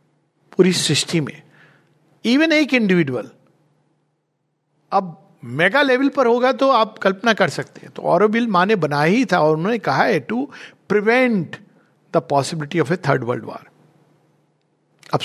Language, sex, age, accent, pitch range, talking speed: Hindi, male, 50-69, native, 155-205 Hz, 145 wpm